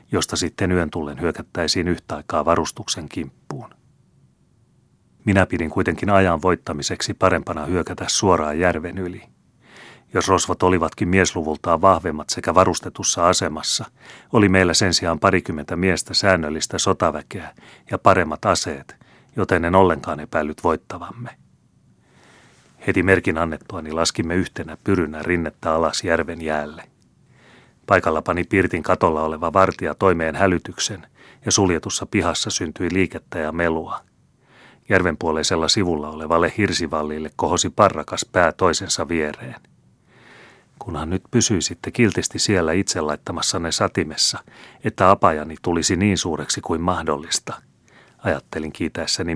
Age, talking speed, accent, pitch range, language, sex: 30-49, 115 wpm, native, 80-95 Hz, Finnish, male